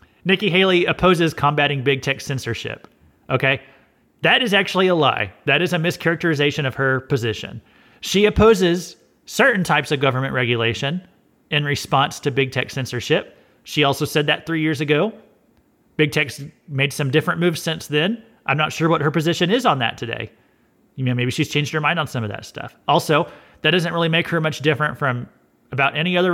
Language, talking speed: English, 185 wpm